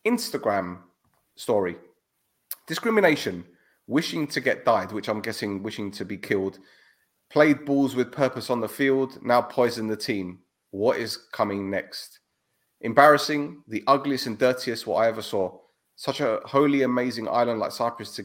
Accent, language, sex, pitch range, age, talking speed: British, English, male, 115-155 Hz, 30-49, 150 wpm